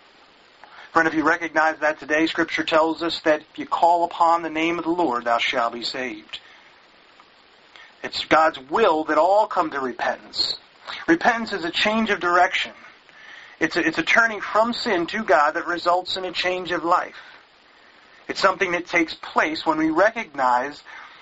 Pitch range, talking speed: 155-185 Hz, 170 wpm